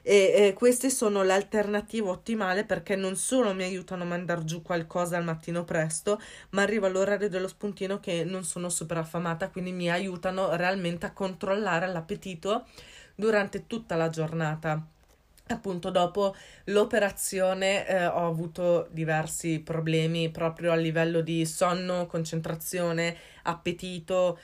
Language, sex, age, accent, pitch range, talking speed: Italian, female, 20-39, native, 175-215 Hz, 130 wpm